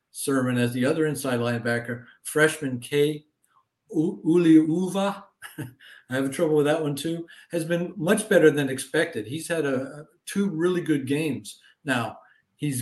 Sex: male